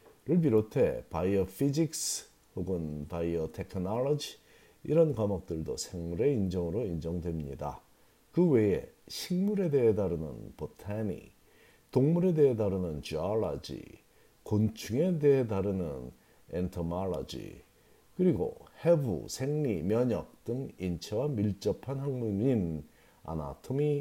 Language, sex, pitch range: Korean, male, 90-135 Hz